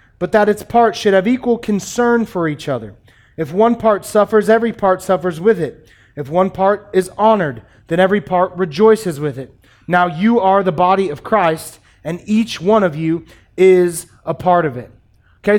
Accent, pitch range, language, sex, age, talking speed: American, 160-200 Hz, English, male, 30-49, 190 wpm